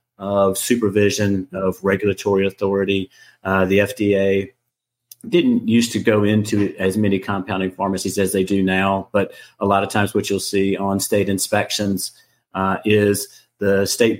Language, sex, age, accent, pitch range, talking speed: English, male, 40-59, American, 95-110 Hz, 150 wpm